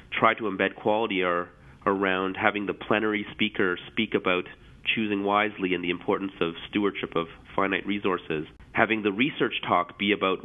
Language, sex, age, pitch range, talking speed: English, male, 30-49, 95-110 Hz, 160 wpm